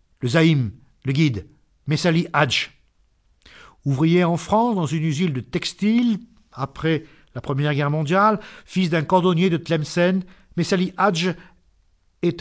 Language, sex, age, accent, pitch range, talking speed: French, male, 50-69, French, 135-180 Hz, 130 wpm